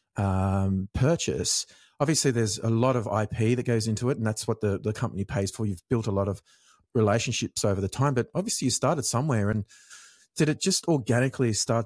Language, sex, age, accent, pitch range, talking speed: English, male, 30-49, Australian, 100-125 Hz, 200 wpm